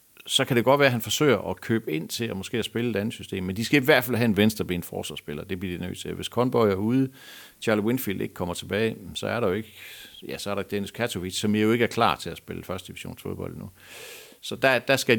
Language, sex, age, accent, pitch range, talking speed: Danish, male, 60-79, native, 95-115 Hz, 275 wpm